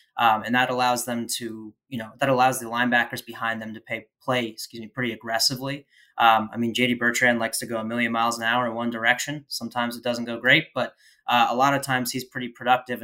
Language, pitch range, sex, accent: English, 115-125 Hz, male, American